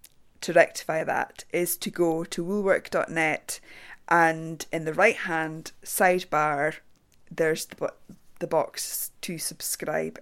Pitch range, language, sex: 160-195 Hz, English, female